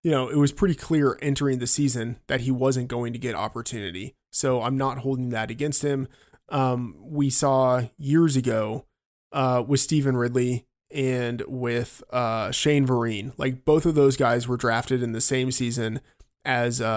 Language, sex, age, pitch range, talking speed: English, male, 20-39, 120-135 Hz, 175 wpm